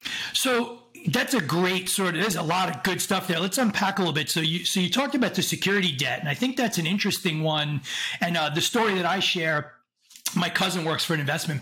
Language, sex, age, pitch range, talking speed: English, male, 30-49, 150-190 Hz, 245 wpm